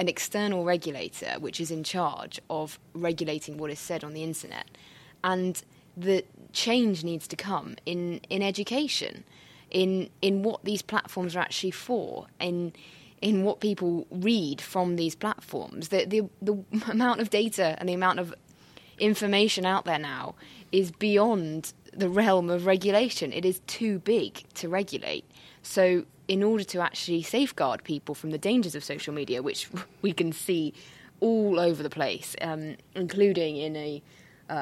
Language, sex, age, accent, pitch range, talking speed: English, female, 20-39, British, 160-200 Hz, 160 wpm